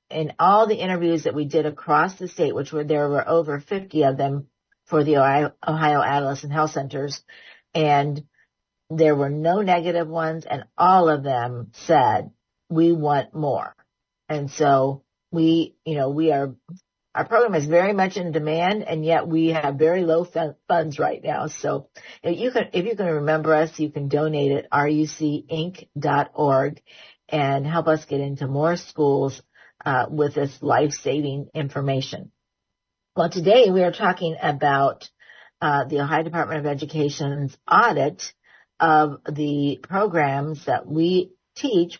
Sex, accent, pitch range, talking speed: female, American, 145-170 Hz, 150 wpm